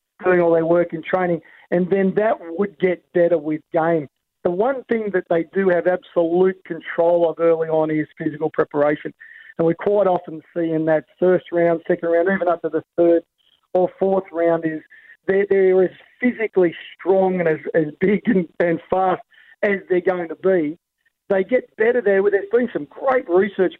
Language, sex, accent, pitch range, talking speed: English, male, Australian, 165-190 Hz, 190 wpm